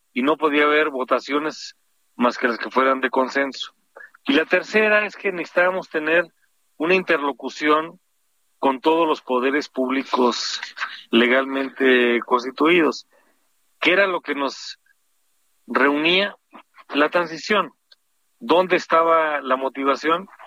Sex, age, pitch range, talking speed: male, 40-59, 125-160 Hz, 115 wpm